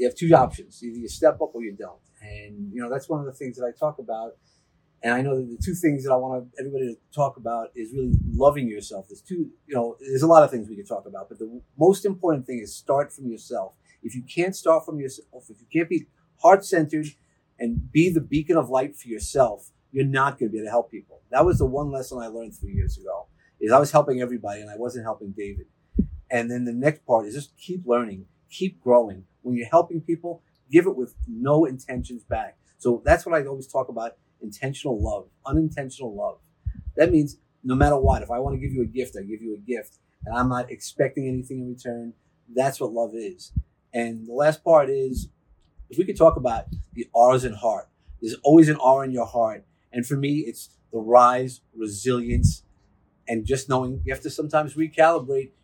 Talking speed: 225 wpm